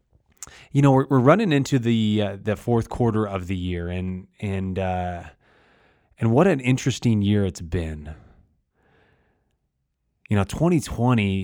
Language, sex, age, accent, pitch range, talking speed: English, male, 20-39, American, 95-125 Hz, 140 wpm